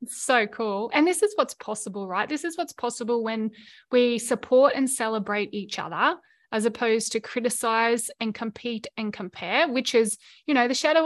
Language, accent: English, Australian